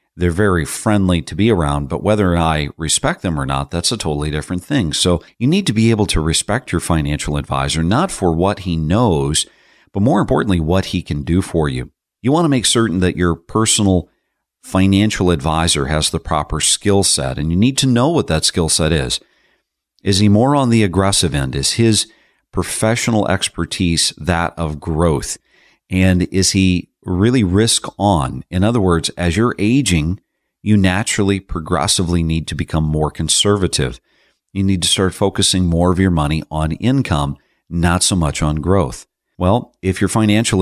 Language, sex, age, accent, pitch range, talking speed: English, male, 40-59, American, 80-100 Hz, 180 wpm